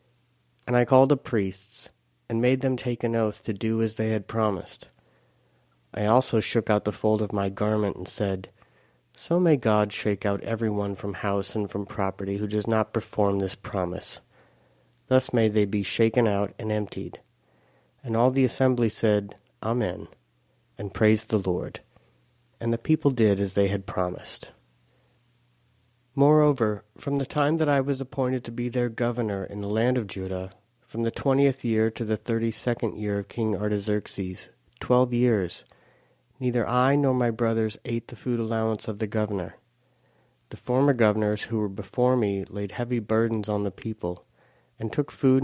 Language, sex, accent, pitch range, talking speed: English, male, American, 100-125 Hz, 170 wpm